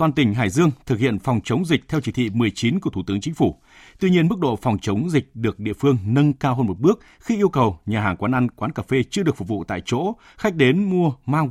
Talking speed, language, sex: 275 wpm, Vietnamese, male